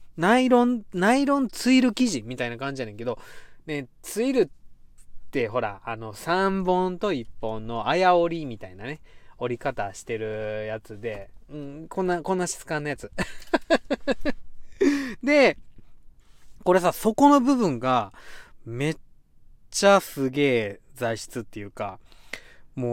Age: 20-39